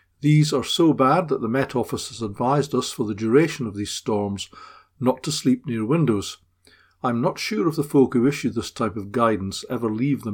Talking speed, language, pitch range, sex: 215 wpm, English, 105-130 Hz, male